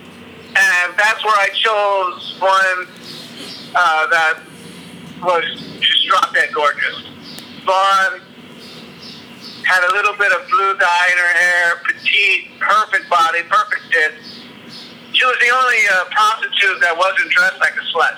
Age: 50-69